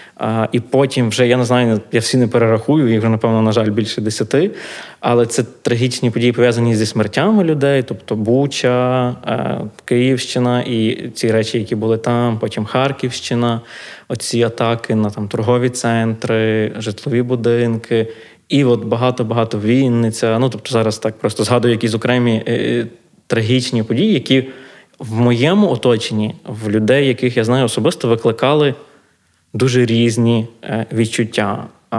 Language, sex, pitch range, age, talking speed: Ukrainian, male, 110-125 Hz, 20-39, 135 wpm